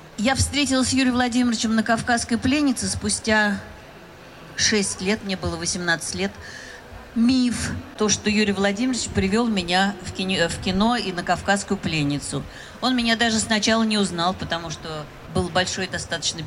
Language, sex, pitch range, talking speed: Russian, female, 185-235 Hz, 140 wpm